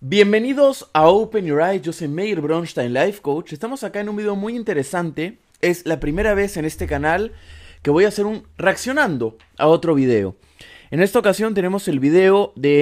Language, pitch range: Spanish, 140-195 Hz